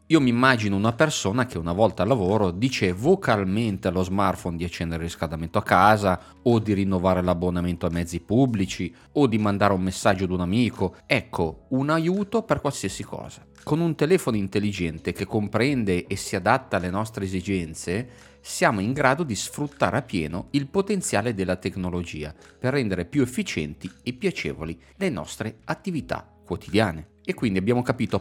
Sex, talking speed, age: male, 165 wpm, 30-49